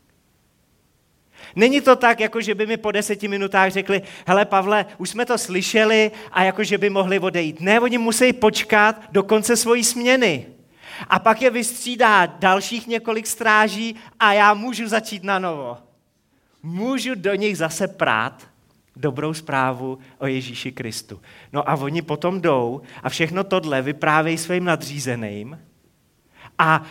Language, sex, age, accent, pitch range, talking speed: Czech, male, 30-49, native, 160-220 Hz, 145 wpm